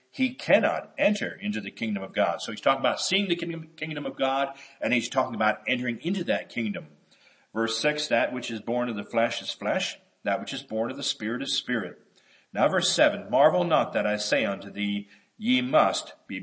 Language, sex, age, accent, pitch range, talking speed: English, male, 50-69, American, 110-165 Hz, 210 wpm